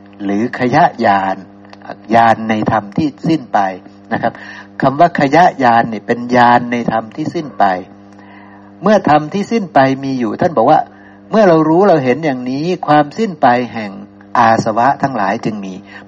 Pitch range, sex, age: 100-140 Hz, male, 60-79